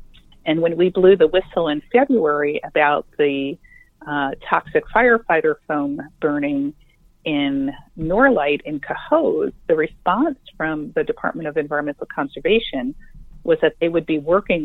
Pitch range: 155-245 Hz